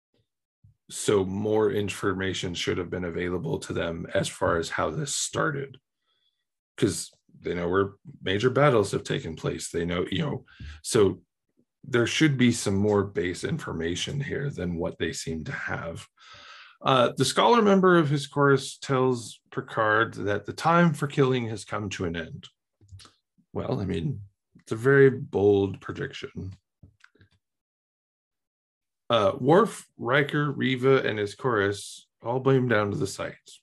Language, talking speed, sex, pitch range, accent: English, 150 wpm, male, 95-135 Hz, American